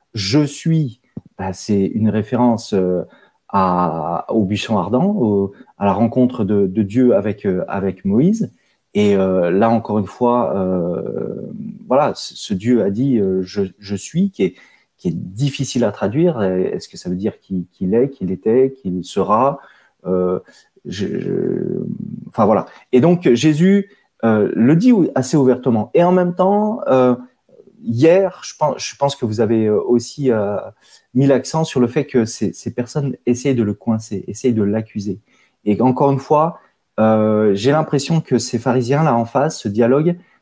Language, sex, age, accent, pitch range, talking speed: French, male, 30-49, French, 110-150 Hz, 165 wpm